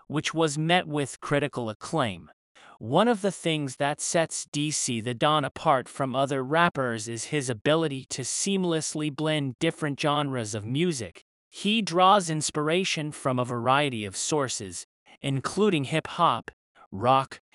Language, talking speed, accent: English, 135 wpm, American